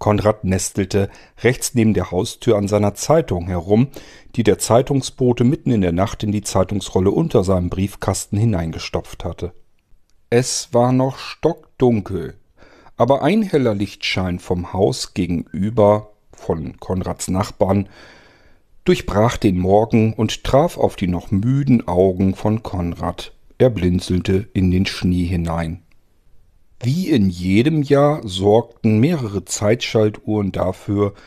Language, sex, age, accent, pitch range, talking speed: German, male, 50-69, German, 95-120 Hz, 125 wpm